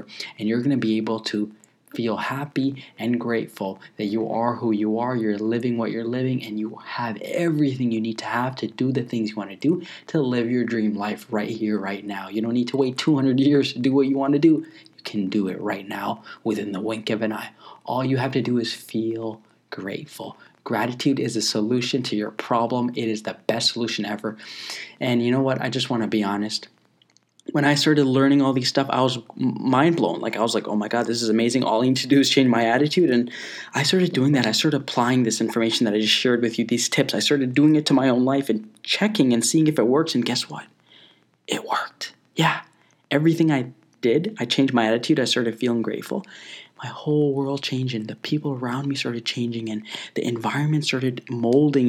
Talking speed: 230 wpm